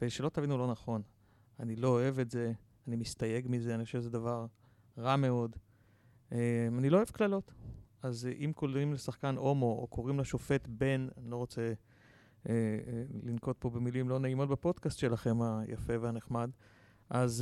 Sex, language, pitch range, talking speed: male, Hebrew, 115-130 Hz, 160 wpm